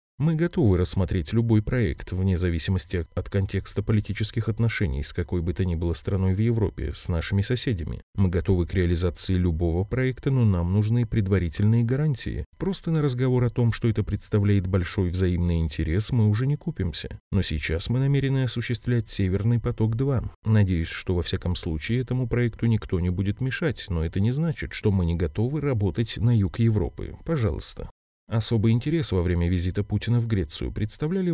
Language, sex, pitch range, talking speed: Russian, male, 90-120 Hz, 170 wpm